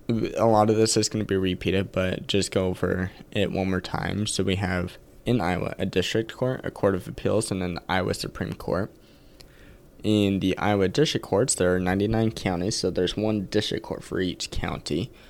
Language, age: English, 20-39